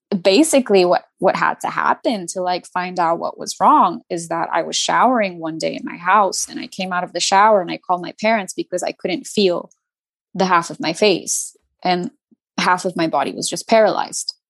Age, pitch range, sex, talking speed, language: 20-39, 175-220 Hz, female, 215 wpm, English